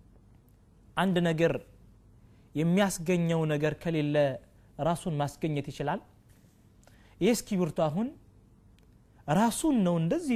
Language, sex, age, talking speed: Amharic, male, 30-49, 70 wpm